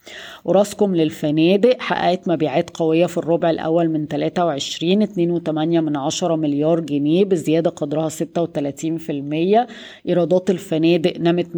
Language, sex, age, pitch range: Arabic, female, 20-39, 155-175 Hz